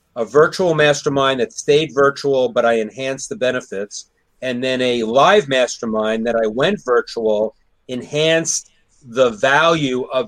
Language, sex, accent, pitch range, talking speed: English, male, American, 115-160 Hz, 140 wpm